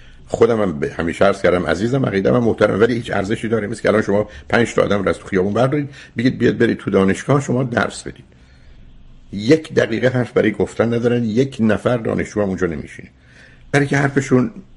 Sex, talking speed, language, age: male, 185 wpm, Persian, 60-79